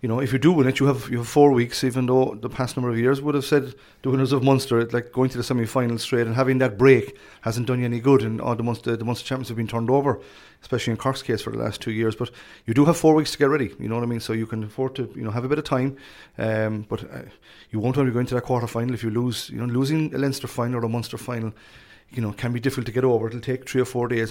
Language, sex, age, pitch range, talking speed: English, male, 30-49, 110-130 Hz, 305 wpm